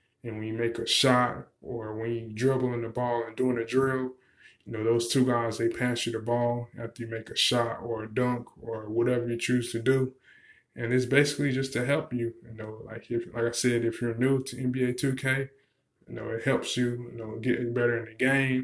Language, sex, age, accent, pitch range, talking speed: English, male, 20-39, American, 115-130 Hz, 235 wpm